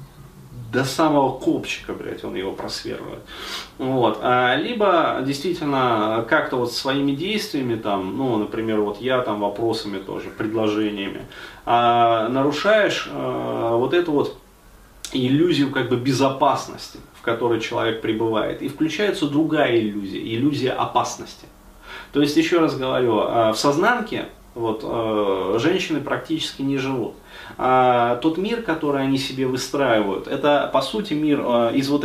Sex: male